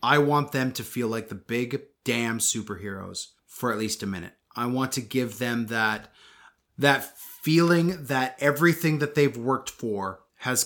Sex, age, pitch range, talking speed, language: male, 30-49, 115-140 Hz, 170 wpm, English